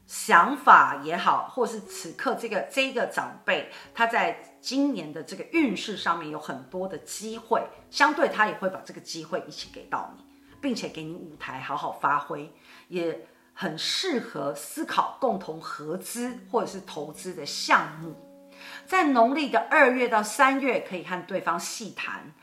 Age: 50-69